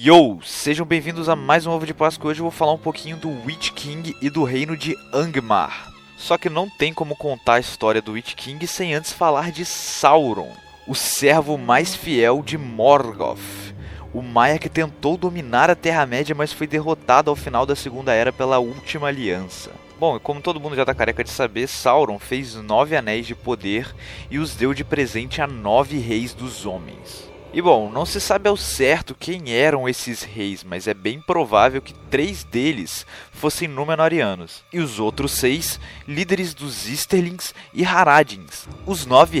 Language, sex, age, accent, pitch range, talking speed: Portuguese, male, 20-39, Brazilian, 120-160 Hz, 185 wpm